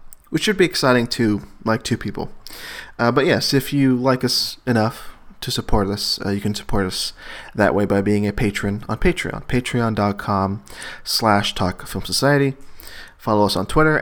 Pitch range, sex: 100-130 Hz, male